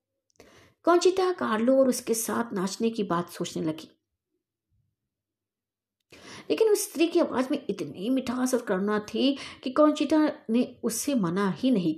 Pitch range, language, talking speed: 185-295 Hz, Hindi, 140 wpm